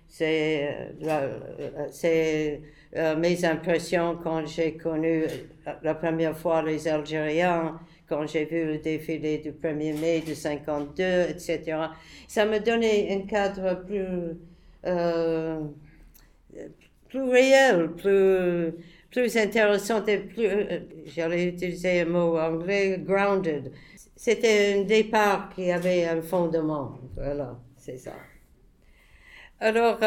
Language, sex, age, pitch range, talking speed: English, female, 60-79, 155-195 Hz, 110 wpm